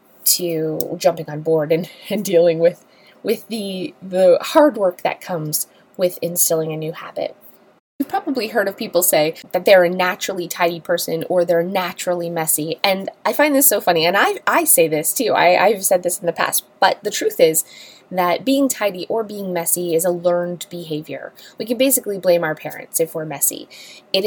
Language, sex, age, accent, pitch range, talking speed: English, female, 20-39, American, 165-200 Hz, 195 wpm